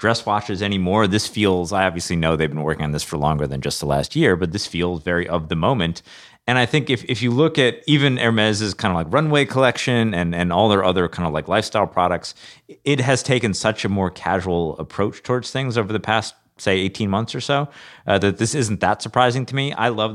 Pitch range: 85-115 Hz